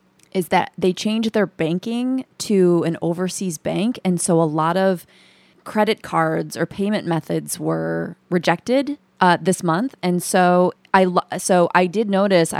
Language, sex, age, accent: English, female, 20-39, American